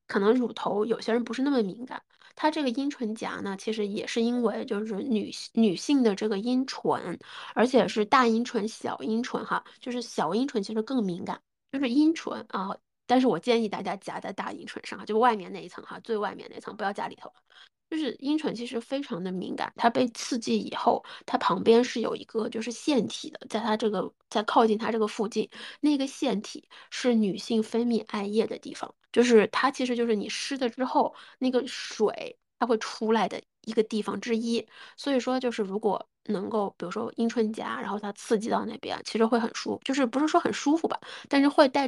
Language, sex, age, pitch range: Chinese, female, 20-39, 215-255 Hz